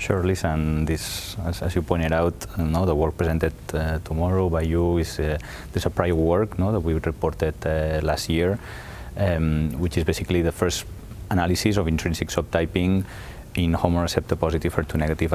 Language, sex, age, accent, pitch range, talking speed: English, male, 30-49, Spanish, 80-95 Hz, 175 wpm